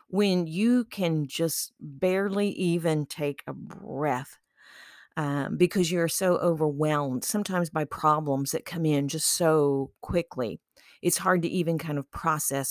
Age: 40-59